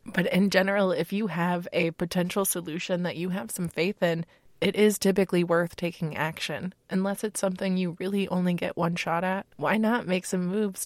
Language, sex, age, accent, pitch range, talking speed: English, female, 20-39, American, 175-200 Hz, 200 wpm